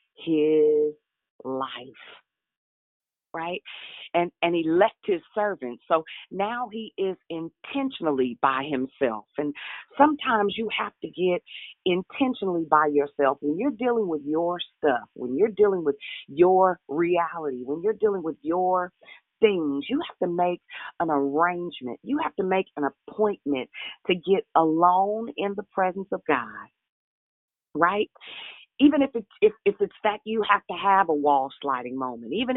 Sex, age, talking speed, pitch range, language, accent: female, 40-59, 140 wpm, 150-220 Hz, English, American